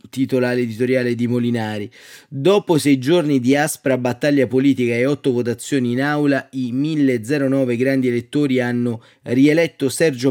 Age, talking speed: 30-49, 135 wpm